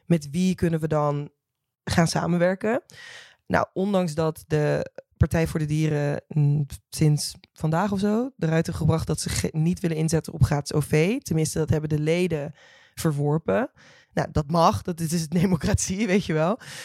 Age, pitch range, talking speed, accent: 20-39, 150-180 Hz, 170 wpm, Dutch